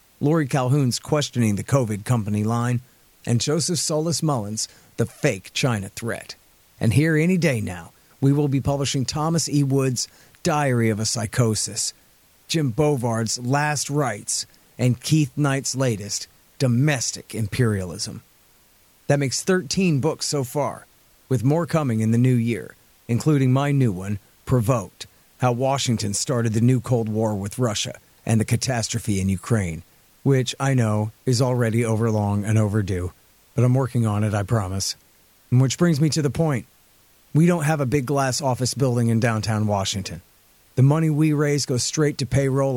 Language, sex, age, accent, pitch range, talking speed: English, male, 40-59, American, 110-140 Hz, 160 wpm